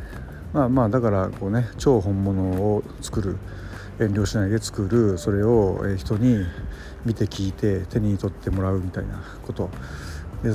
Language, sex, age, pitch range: Japanese, male, 50-69, 95-115 Hz